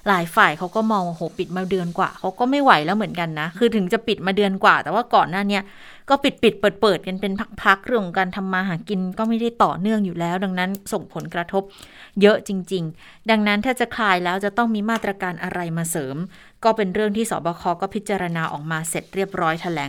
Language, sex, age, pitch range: Thai, female, 30-49, 175-215 Hz